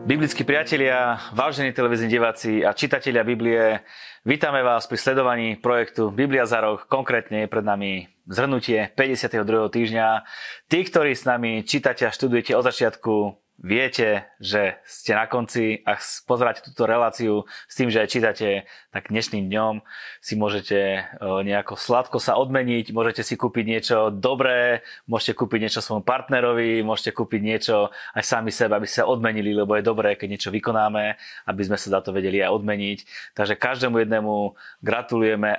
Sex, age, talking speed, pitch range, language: male, 30-49, 155 wpm, 100-120 Hz, Slovak